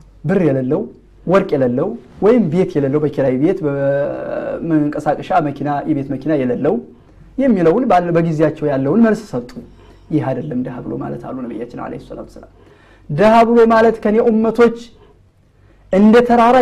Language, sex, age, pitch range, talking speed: Amharic, male, 30-49, 155-225 Hz, 110 wpm